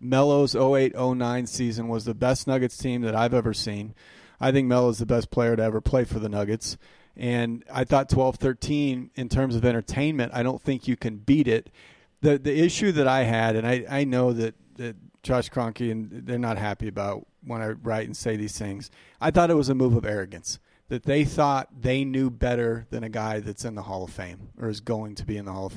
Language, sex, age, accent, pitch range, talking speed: English, male, 40-59, American, 110-130 Hz, 235 wpm